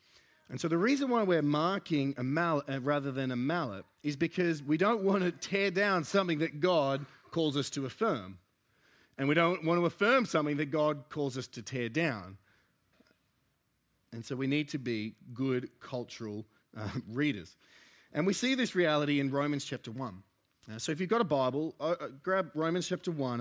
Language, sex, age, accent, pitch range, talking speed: English, male, 30-49, Australian, 125-170 Hz, 185 wpm